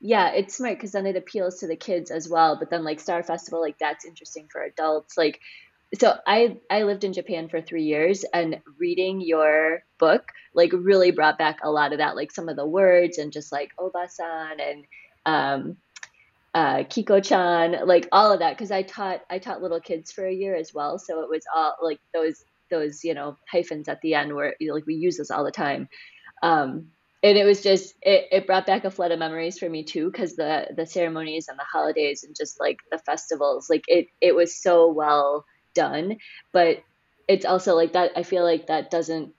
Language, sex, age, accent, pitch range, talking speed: English, female, 20-39, American, 155-185 Hz, 215 wpm